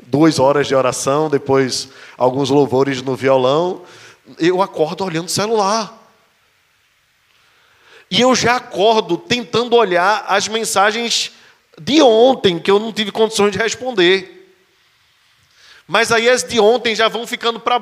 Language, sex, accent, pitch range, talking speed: Portuguese, male, Brazilian, 140-205 Hz, 135 wpm